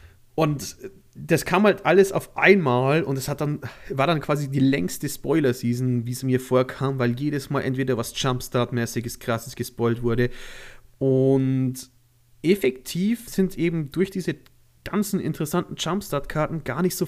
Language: German